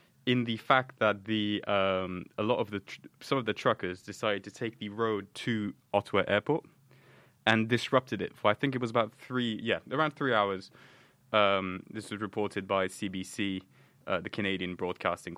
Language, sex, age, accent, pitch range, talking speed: English, male, 20-39, British, 95-130 Hz, 185 wpm